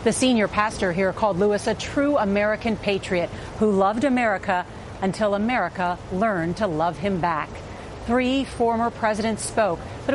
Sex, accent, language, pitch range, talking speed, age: female, American, English, 190-240 Hz, 150 wpm, 40-59